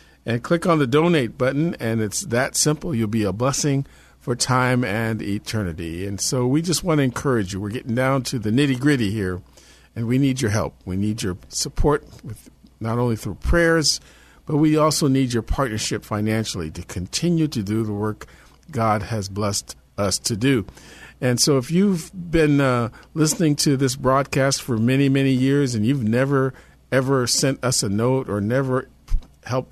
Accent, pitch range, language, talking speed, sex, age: American, 110-140 Hz, English, 180 wpm, male, 50-69